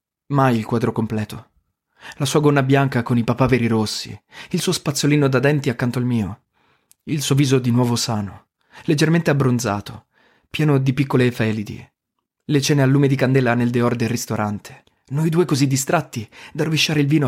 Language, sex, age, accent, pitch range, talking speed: Italian, male, 30-49, native, 120-150 Hz, 175 wpm